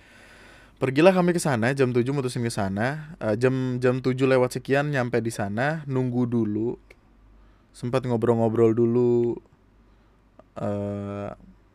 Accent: native